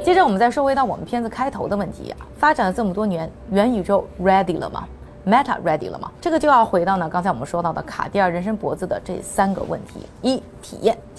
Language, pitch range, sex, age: Chinese, 170-240 Hz, female, 20-39